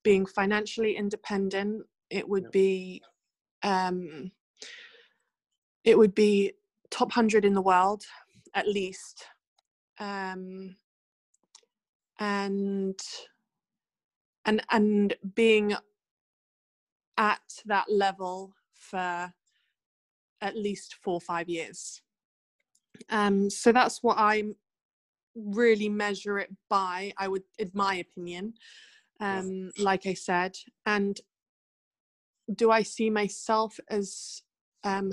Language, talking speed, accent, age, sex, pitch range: English, 95 wpm, British, 20-39, female, 190-215 Hz